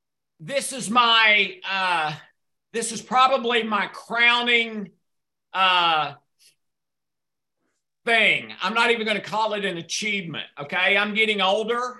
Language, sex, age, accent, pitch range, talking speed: English, male, 50-69, American, 180-225 Hz, 120 wpm